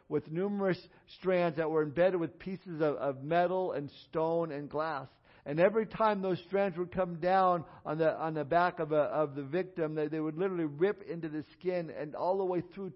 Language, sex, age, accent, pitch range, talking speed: English, male, 50-69, American, 165-210 Hz, 215 wpm